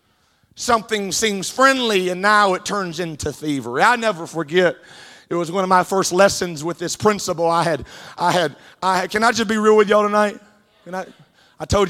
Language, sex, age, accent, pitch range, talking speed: English, male, 30-49, American, 175-220 Hz, 200 wpm